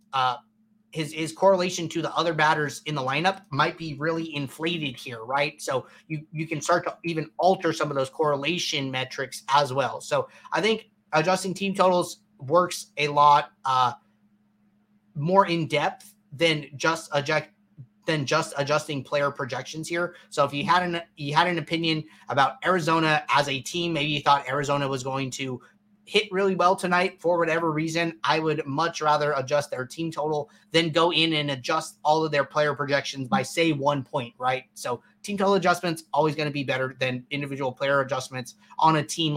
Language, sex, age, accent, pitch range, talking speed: English, male, 30-49, American, 145-195 Hz, 185 wpm